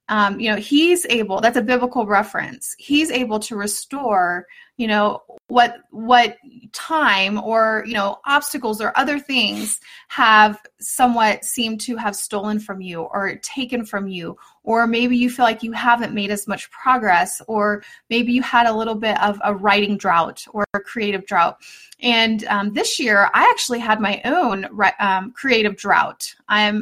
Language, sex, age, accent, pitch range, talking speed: English, female, 30-49, American, 210-255 Hz, 170 wpm